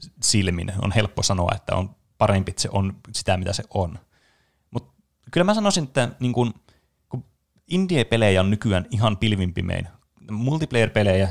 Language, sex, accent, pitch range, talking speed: Finnish, male, native, 95-115 Hz, 145 wpm